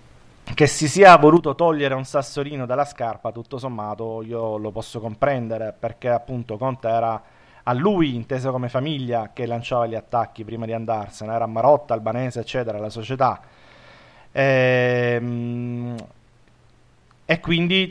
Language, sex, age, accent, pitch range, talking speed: Italian, male, 30-49, native, 115-135 Hz, 135 wpm